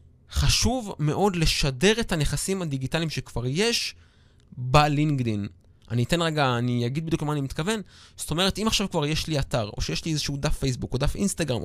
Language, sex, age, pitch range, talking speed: Hebrew, male, 20-39, 120-175 Hz, 180 wpm